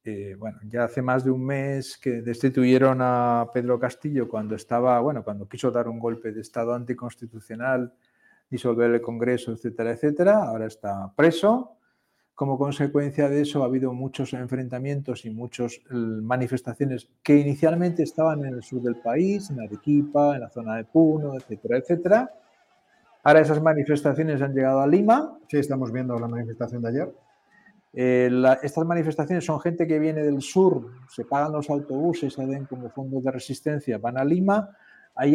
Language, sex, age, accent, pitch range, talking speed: Spanish, male, 40-59, Spanish, 125-155 Hz, 165 wpm